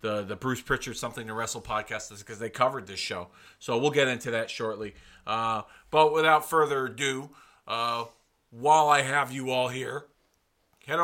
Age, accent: 40-59, American